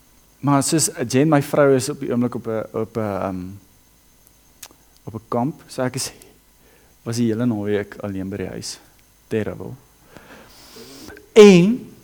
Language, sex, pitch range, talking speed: English, male, 110-155 Hz, 125 wpm